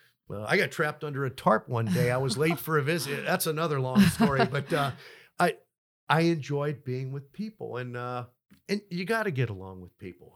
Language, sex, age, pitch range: English, male, 50-69, 120-145 Hz